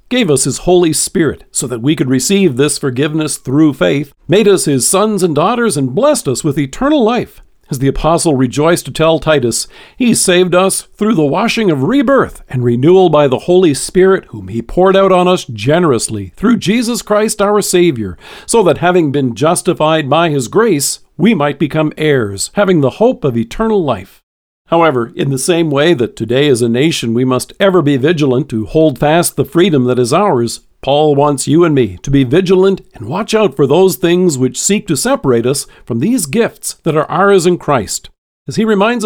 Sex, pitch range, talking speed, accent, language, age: male, 135-190 Hz, 200 wpm, American, English, 50-69